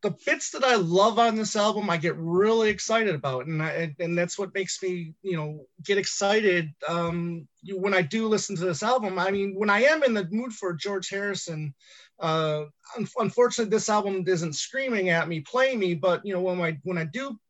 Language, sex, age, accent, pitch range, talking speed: English, male, 30-49, American, 160-195 Hz, 215 wpm